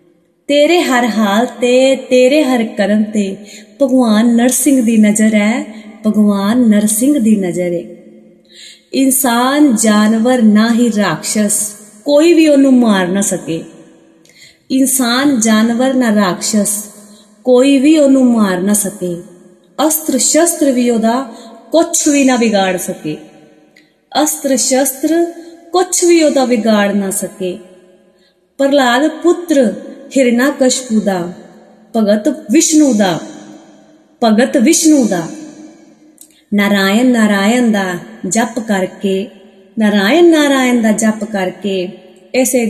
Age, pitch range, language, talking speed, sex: 30-49, 205-270 Hz, Punjabi, 105 wpm, female